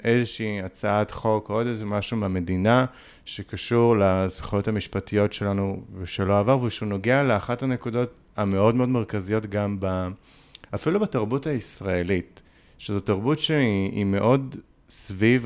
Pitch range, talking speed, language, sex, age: 100-120 Hz, 120 wpm, Hebrew, male, 30-49